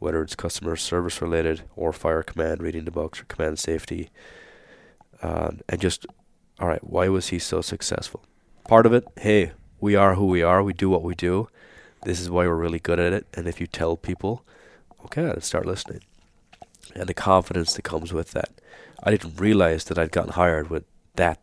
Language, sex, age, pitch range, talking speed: English, male, 30-49, 80-90 Hz, 195 wpm